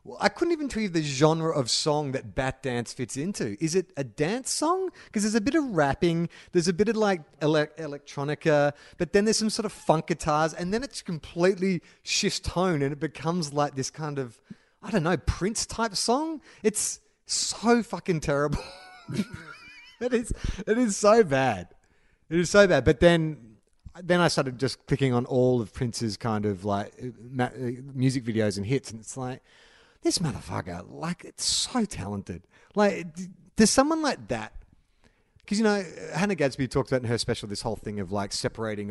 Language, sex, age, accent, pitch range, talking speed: English, male, 30-49, Australian, 115-175 Hz, 190 wpm